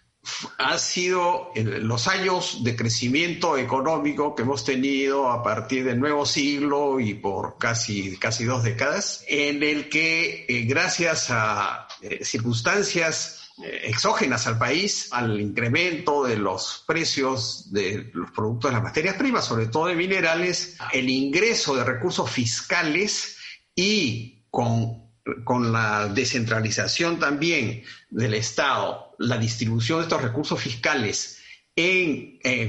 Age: 50-69